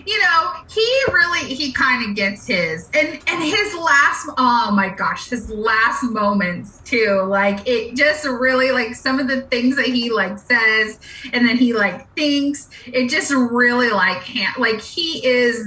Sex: female